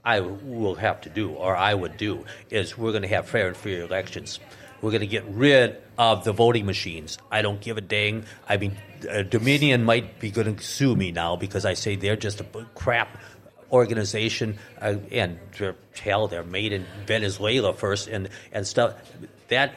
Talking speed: 185 wpm